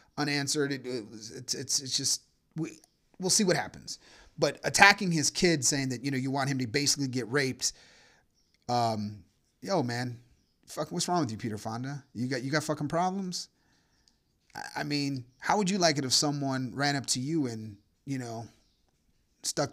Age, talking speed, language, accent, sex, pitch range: 30-49, 185 wpm, English, American, male, 125-180 Hz